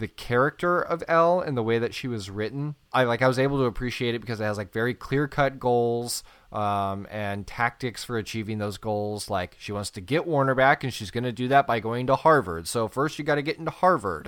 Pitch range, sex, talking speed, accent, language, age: 110-135 Hz, male, 250 wpm, American, English, 20-39